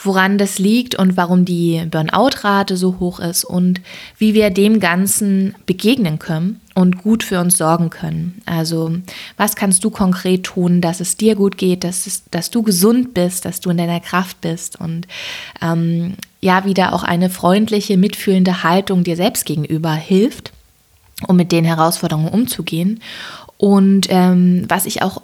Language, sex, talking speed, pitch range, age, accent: German, female, 160 wpm, 170-200 Hz, 20-39, German